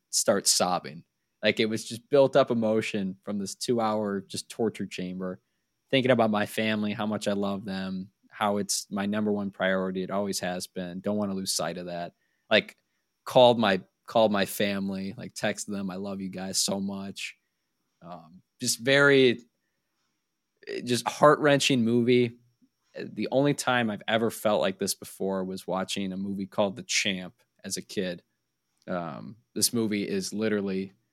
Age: 20-39